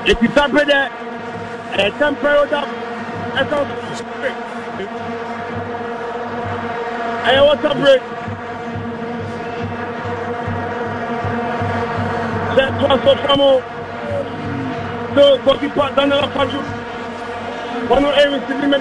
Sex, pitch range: male, 235-270 Hz